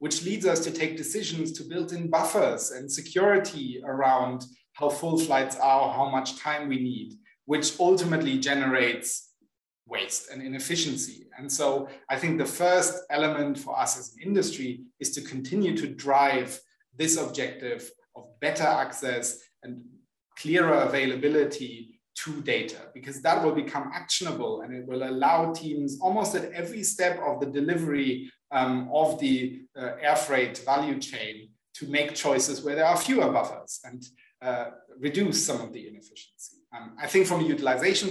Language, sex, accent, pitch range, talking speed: English, male, German, 130-160 Hz, 160 wpm